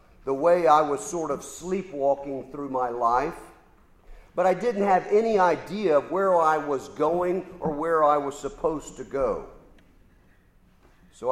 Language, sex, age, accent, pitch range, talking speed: English, male, 50-69, American, 135-170 Hz, 155 wpm